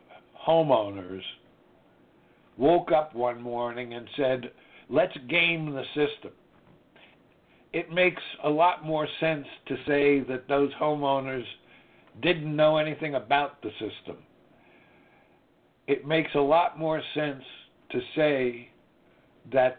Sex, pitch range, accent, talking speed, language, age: male, 120-145 Hz, American, 110 wpm, English, 60-79